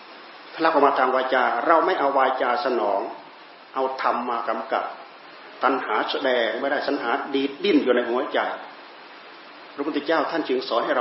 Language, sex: Thai, male